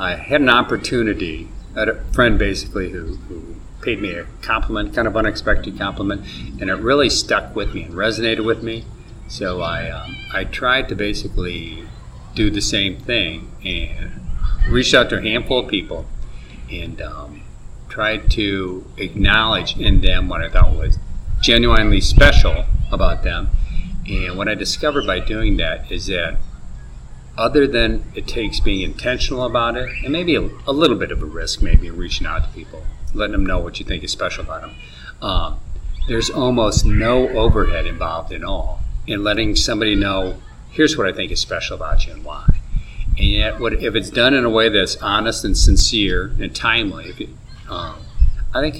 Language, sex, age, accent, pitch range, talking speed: English, male, 50-69, American, 90-110 Hz, 180 wpm